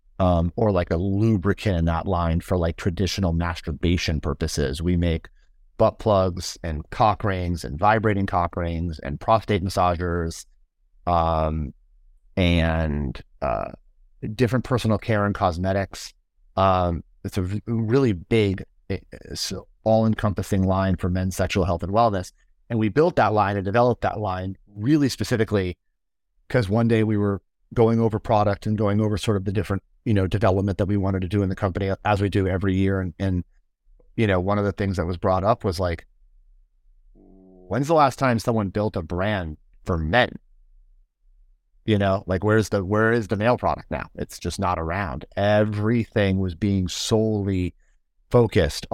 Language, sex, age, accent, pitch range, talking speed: English, male, 30-49, American, 85-105 Hz, 165 wpm